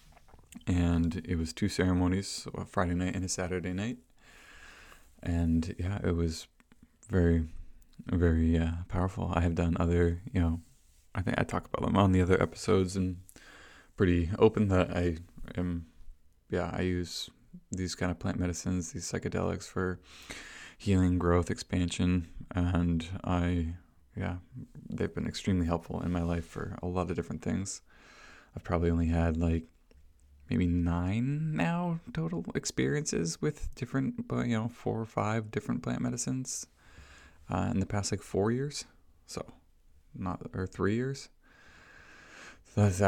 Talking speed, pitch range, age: 150 wpm, 85-100 Hz, 20-39